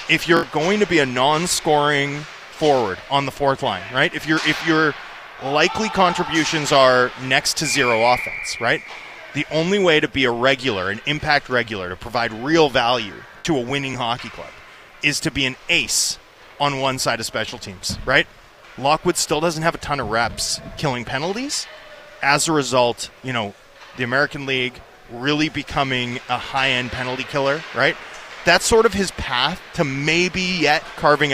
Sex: male